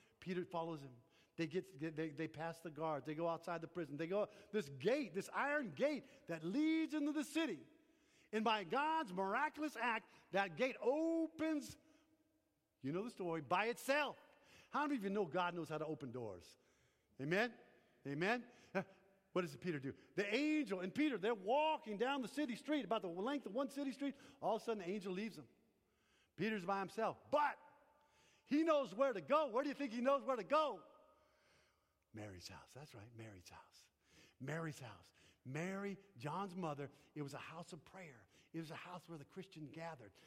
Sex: male